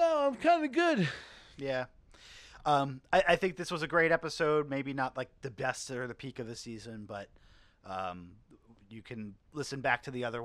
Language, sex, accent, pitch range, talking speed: English, male, American, 110-130 Hz, 205 wpm